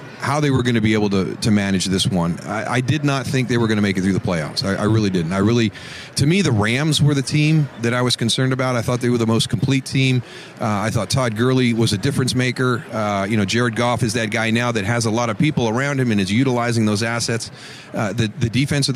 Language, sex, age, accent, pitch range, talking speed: English, male, 40-59, American, 105-130 Hz, 280 wpm